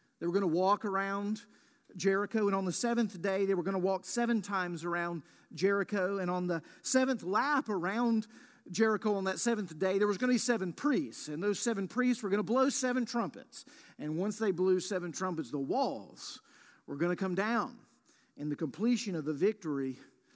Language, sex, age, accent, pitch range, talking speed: English, male, 50-69, American, 185-250 Hz, 200 wpm